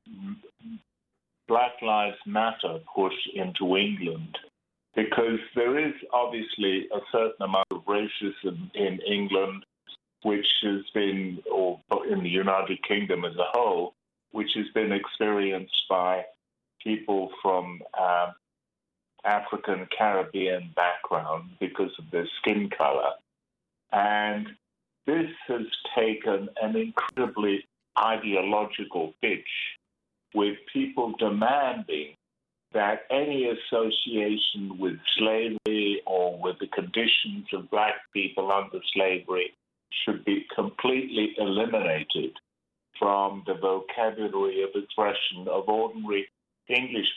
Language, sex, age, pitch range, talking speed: English, male, 50-69, 95-115 Hz, 100 wpm